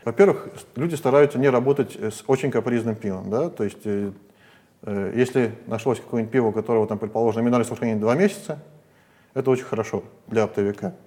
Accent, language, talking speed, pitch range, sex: native, Russian, 165 wpm, 110-135 Hz, male